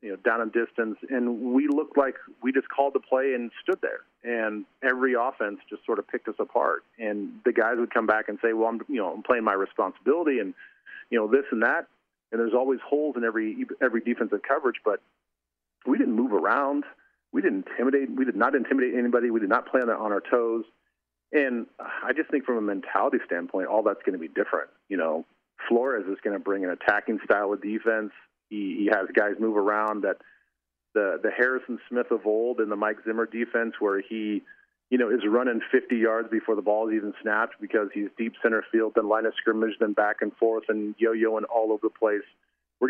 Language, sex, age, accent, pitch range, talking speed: English, male, 40-59, American, 105-125 Hz, 215 wpm